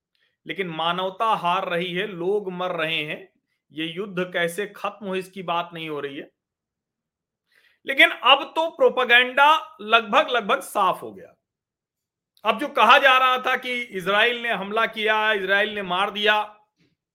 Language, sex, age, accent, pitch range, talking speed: Hindi, male, 40-59, native, 195-250 Hz, 155 wpm